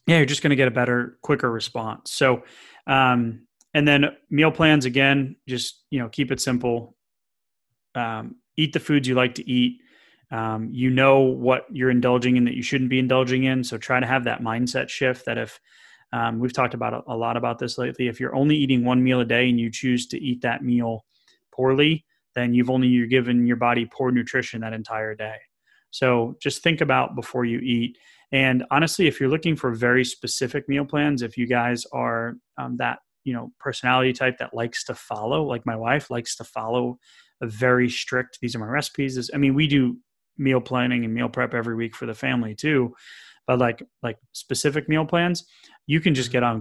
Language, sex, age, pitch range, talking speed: English, male, 30-49, 120-135 Hz, 210 wpm